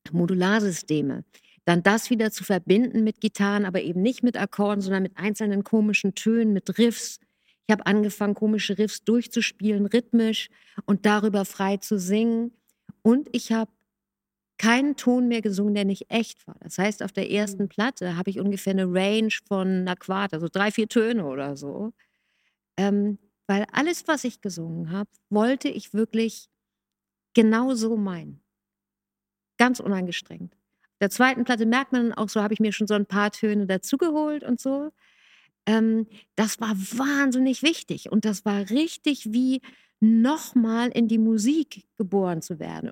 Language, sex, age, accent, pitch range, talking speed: German, female, 50-69, German, 195-230 Hz, 160 wpm